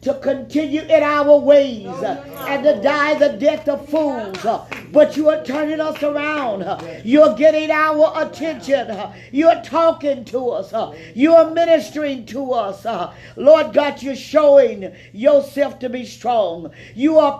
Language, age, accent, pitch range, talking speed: English, 50-69, American, 260-310 Hz, 150 wpm